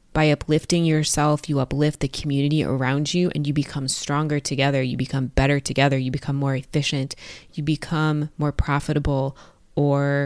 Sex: female